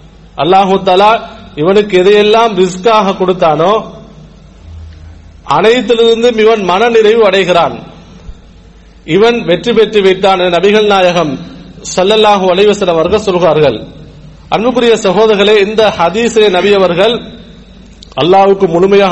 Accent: Indian